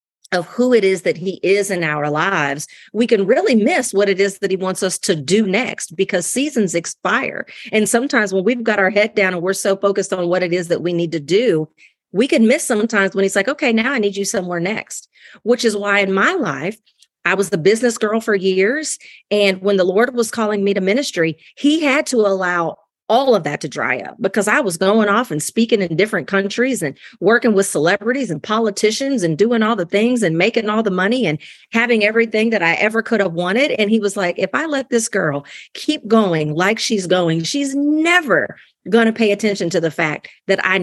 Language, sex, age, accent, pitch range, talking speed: English, female, 40-59, American, 180-225 Hz, 225 wpm